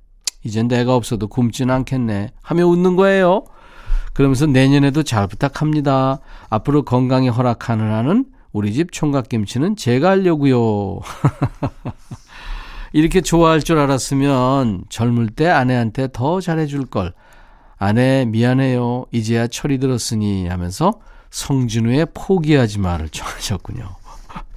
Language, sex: Korean, male